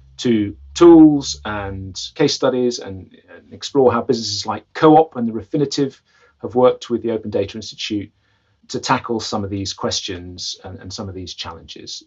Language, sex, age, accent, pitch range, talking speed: English, male, 40-59, British, 110-145 Hz, 170 wpm